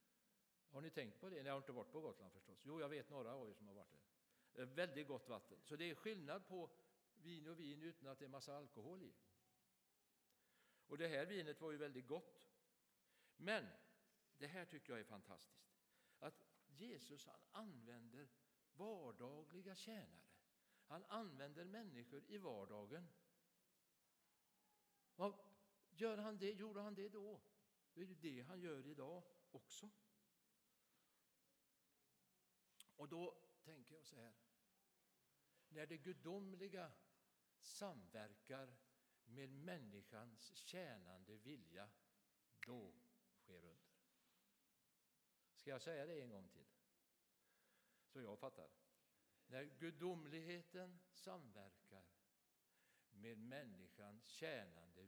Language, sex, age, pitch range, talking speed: Swedish, male, 60-79, 130-195 Hz, 125 wpm